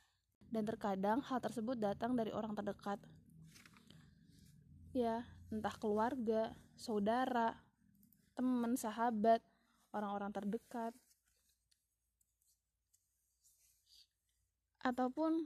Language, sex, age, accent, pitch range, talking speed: Indonesian, female, 20-39, native, 200-245 Hz, 65 wpm